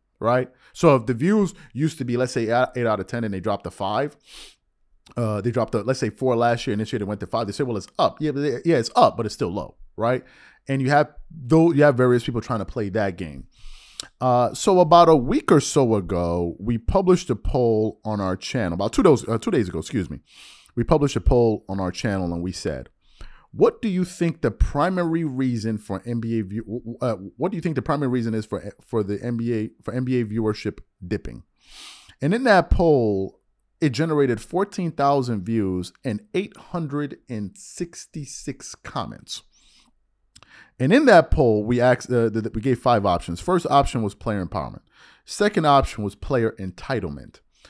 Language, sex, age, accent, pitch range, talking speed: English, male, 30-49, American, 105-145 Hz, 195 wpm